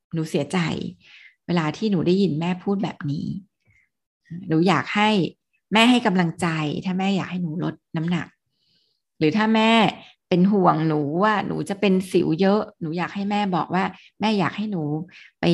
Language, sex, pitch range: Thai, female, 170-210 Hz